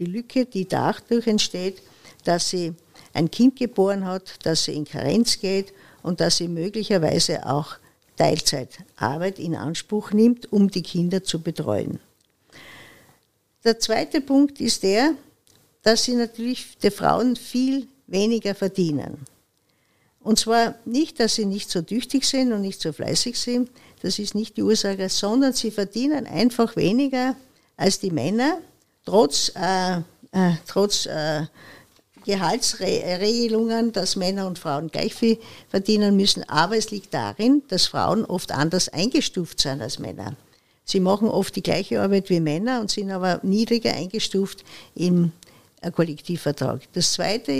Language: German